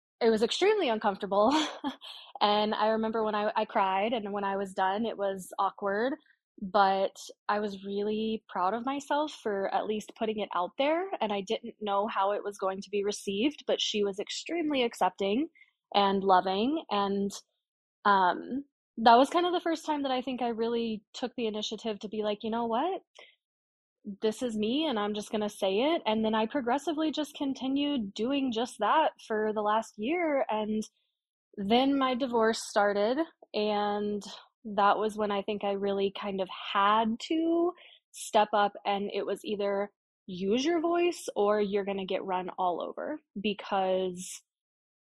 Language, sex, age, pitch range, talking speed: English, female, 20-39, 200-255 Hz, 175 wpm